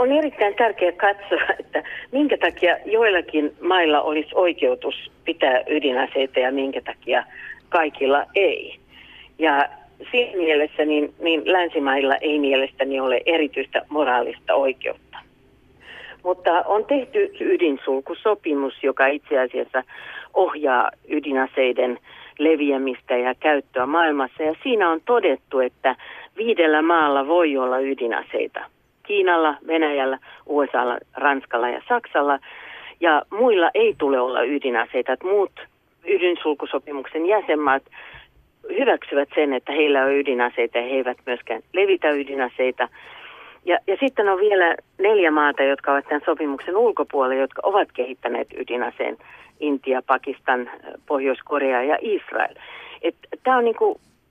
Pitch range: 135-190 Hz